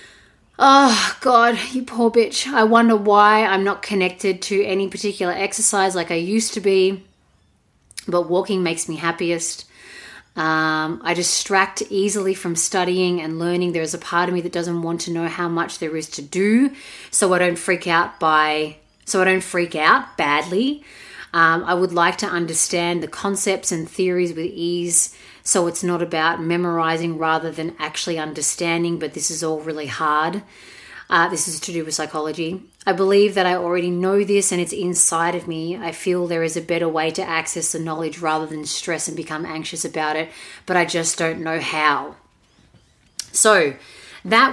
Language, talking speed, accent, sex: English, 180 wpm, Australian, female